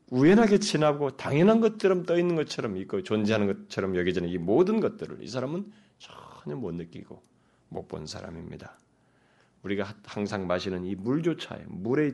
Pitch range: 100-155 Hz